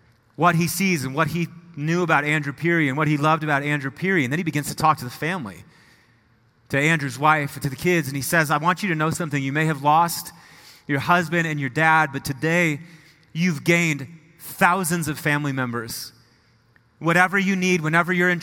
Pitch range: 145-180 Hz